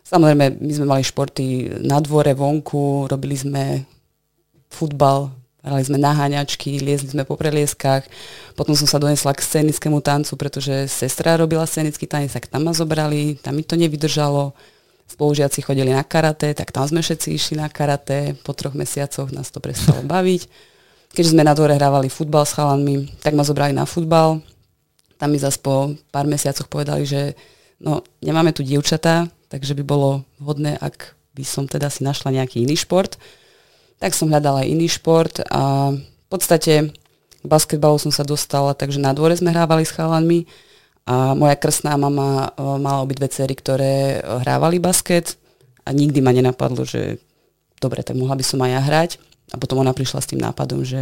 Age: 20-39